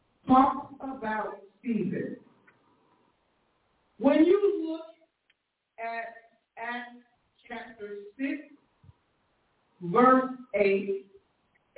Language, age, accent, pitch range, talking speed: English, 50-69, American, 230-300 Hz, 60 wpm